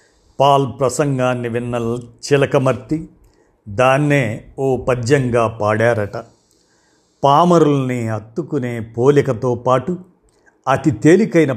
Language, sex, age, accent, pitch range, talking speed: Telugu, male, 50-69, native, 115-150 Hz, 75 wpm